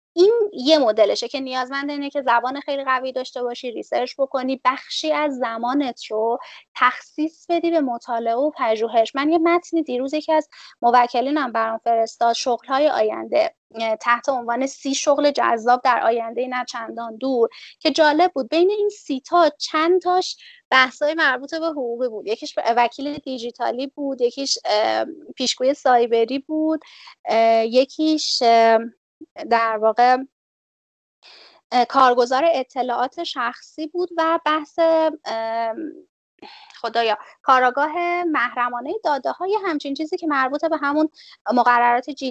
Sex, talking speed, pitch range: female, 125 wpm, 235-310 Hz